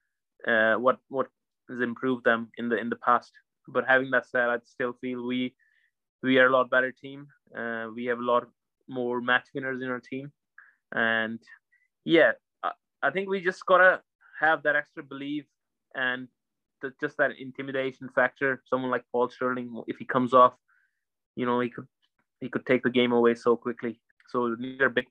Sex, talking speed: male, 190 wpm